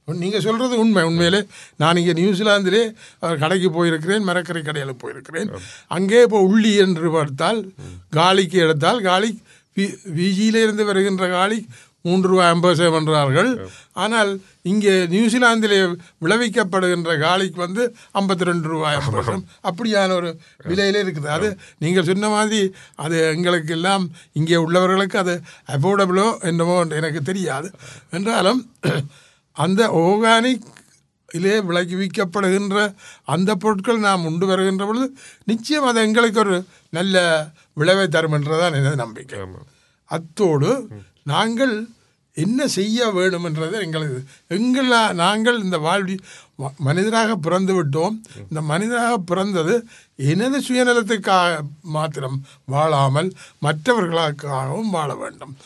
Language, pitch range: Tamil, 160-210 Hz